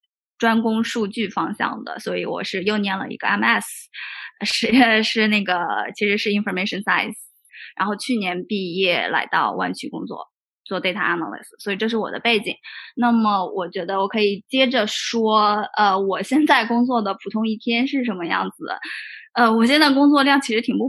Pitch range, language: 195-240 Hz, Chinese